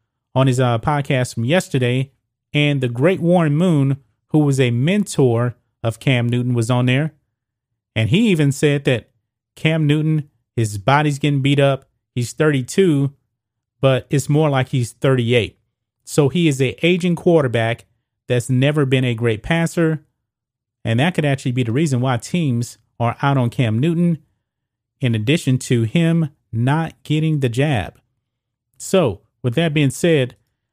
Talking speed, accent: 155 wpm, American